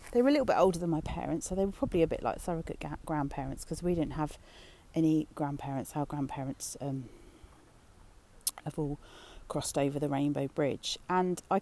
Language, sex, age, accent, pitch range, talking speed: English, female, 40-59, British, 155-185 Hz, 190 wpm